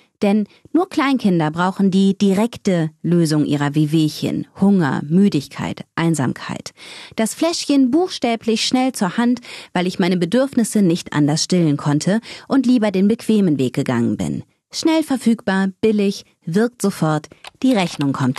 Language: German